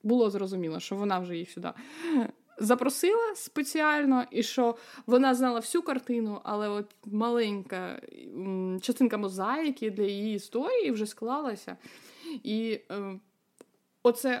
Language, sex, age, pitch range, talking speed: Ukrainian, female, 20-39, 200-255 Hz, 115 wpm